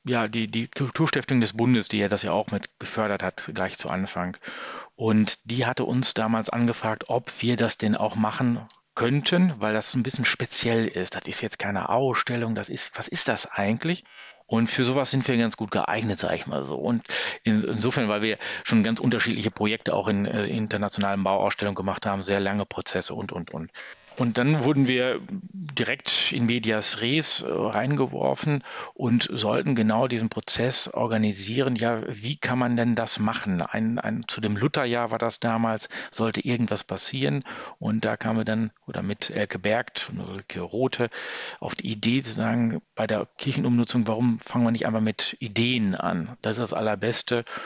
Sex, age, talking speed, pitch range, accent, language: male, 40-59, 185 wpm, 105-125 Hz, German, German